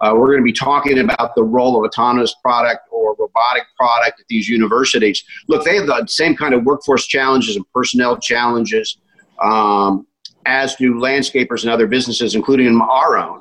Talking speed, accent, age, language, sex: 180 wpm, American, 50-69, English, male